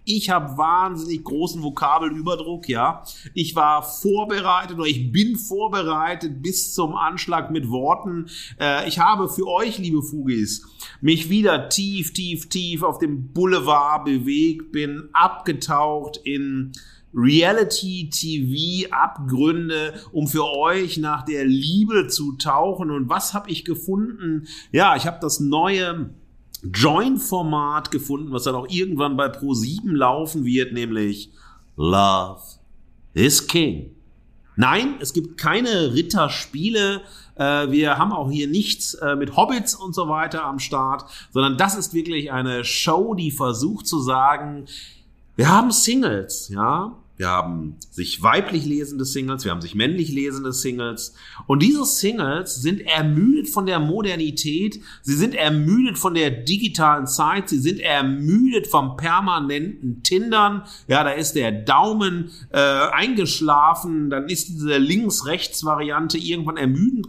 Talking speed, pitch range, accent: 130 wpm, 140-180 Hz, German